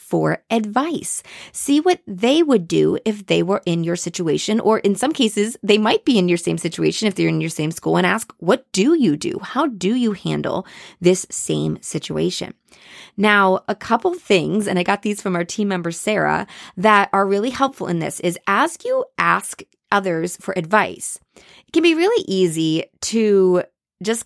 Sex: female